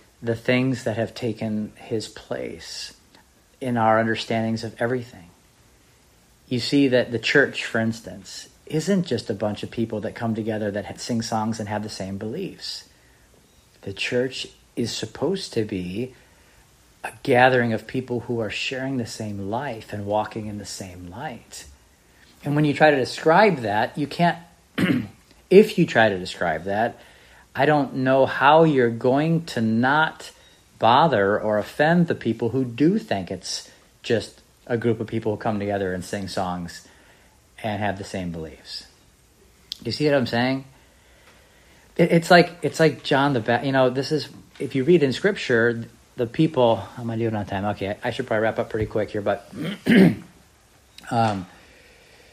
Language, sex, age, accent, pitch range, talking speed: English, male, 40-59, American, 105-130 Hz, 170 wpm